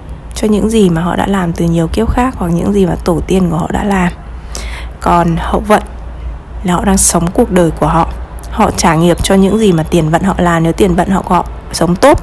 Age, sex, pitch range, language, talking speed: 20-39, female, 160-210 Hz, Vietnamese, 245 wpm